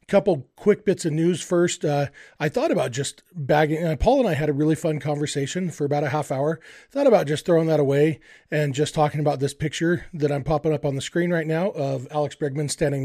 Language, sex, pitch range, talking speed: English, male, 140-165 Hz, 235 wpm